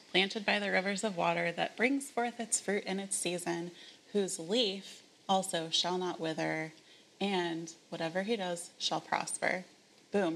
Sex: female